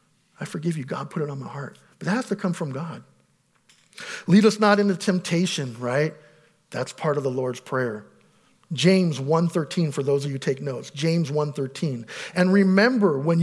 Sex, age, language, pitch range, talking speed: male, 50-69, English, 150-205 Hz, 190 wpm